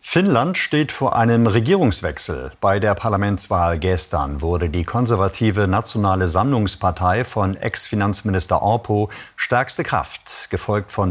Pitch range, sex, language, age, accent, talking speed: 90-115 Hz, male, German, 50-69, German, 115 wpm